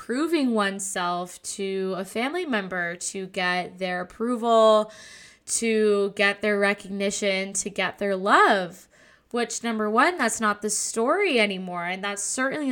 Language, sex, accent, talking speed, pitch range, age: English, female, American, 135 wpm, 195-225 Hz, 10-29